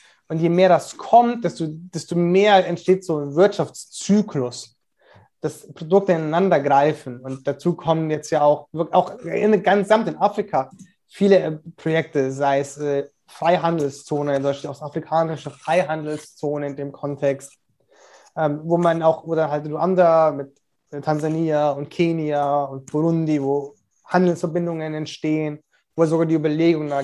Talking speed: 130 wpm